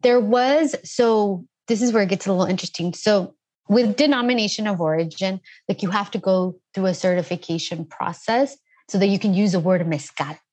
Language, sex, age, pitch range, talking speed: English, female, 20-39, 175-210 Hz, 190 wpm